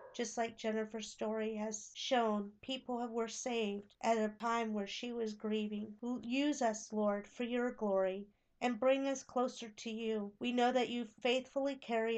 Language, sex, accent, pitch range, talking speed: English, female, American, 215-245 Hz, 170 wpm